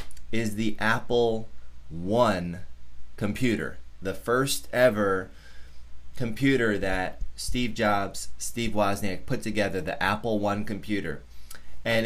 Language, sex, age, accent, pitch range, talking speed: English, male, 20-39, American, 85-110 Hz, 105 wpm